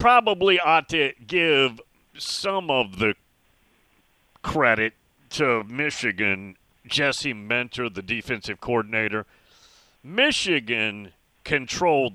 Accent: American